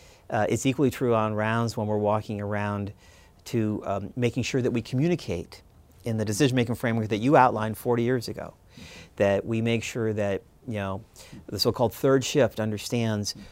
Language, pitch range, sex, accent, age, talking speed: English, 100-120 Hz, male, American, 50-69, 175 wpm